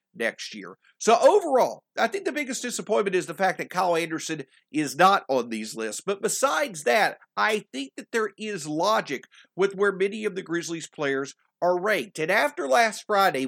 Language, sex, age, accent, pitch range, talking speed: English, male, 50-69, American, 145-200 Hz, 185 wpm